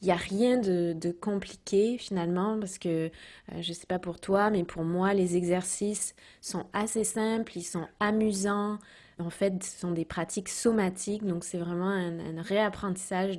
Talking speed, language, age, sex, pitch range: 180 wpm, French, 20-39, female, 180-205 Hz